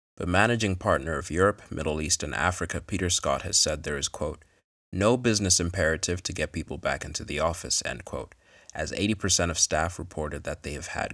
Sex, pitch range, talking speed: male, 80-95 Hz, 200 wpm